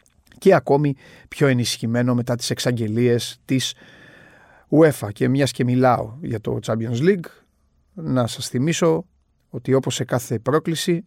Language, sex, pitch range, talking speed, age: Greek, male, 120-150 Hz, 135 wpm, 30-49